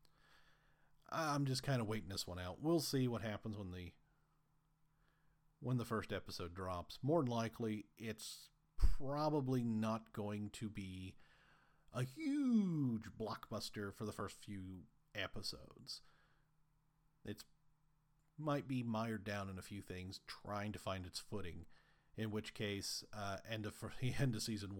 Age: 40-59